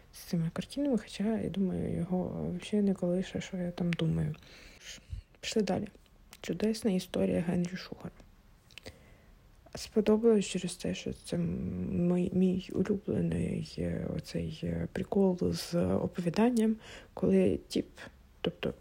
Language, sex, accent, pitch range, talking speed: Ukrainian, female, native, 170-205 Hz, 110 wpm